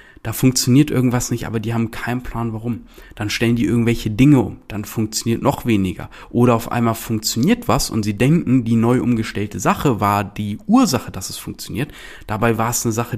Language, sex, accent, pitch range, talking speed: German, male, German, 105-130 Hz, 195 wpm